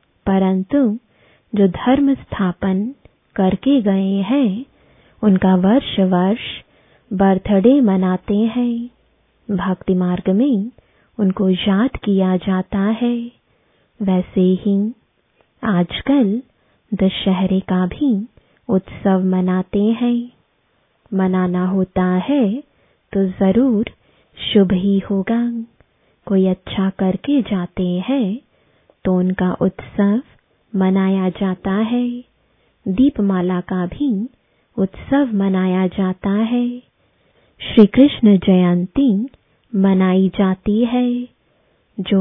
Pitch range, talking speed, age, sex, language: 190-240 Hz, 90 wpm, 20-39, female, English